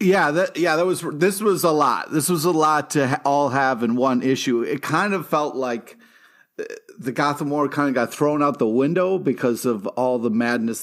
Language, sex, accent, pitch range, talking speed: English, male, American, 120-155 Hz, 220 wpm